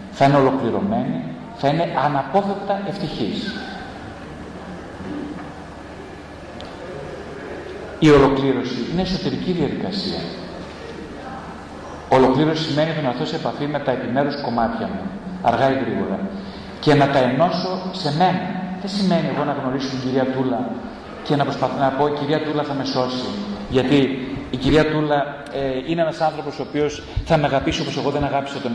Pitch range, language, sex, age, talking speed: 130-185 Hz, Greek, male, 40-59, 140 wpm